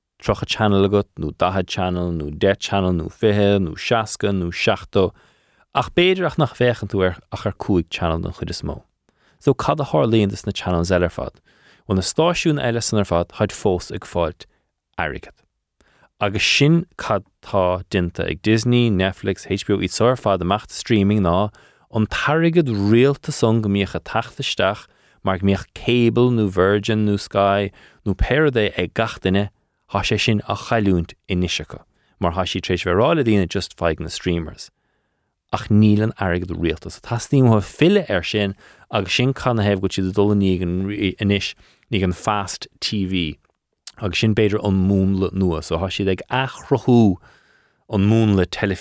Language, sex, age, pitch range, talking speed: English, male, 20-39, 90-110 Hz, 110 wpm